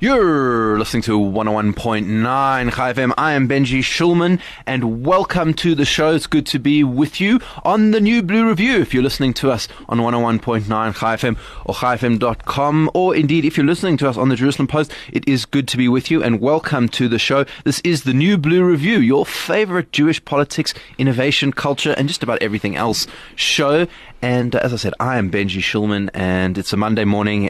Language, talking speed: English, 195 wpm